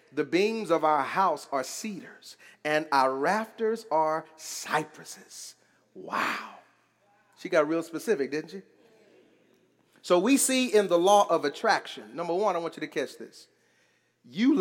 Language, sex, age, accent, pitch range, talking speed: English, male, 40-59, American, 195-295 Hz, 150 wpm